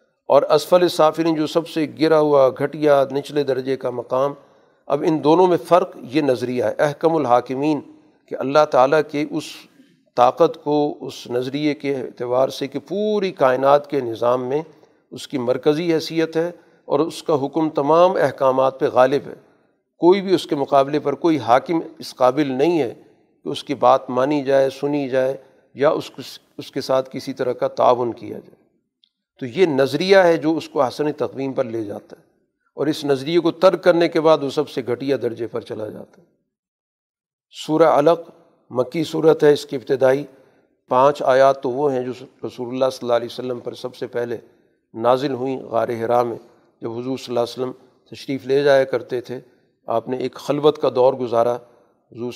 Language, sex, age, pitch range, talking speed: Urdu, male, 50-69, 125-155 Hz, 185 wpm